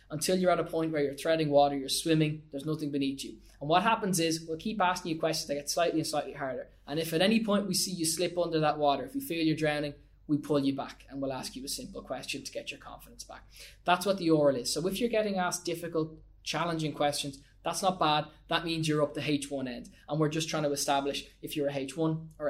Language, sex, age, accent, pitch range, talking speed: English, male, 20-39, Irish, 140-160 Hz, 260 wpm